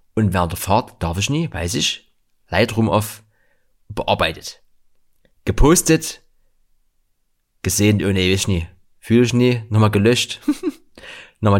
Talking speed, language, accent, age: 130 wpm, German, German, 30-49